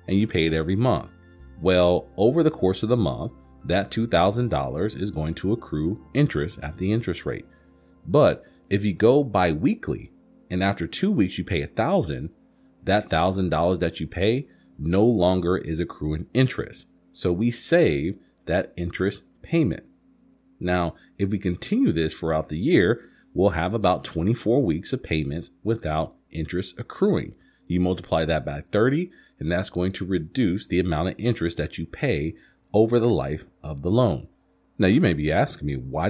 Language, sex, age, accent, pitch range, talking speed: English, male, 40-59, American, 80-110 Hz, 175 wpm